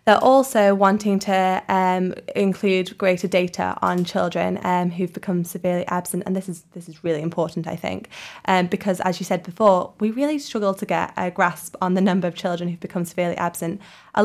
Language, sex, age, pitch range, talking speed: English, female, 20-39, 180-195 Hz, 200 wpm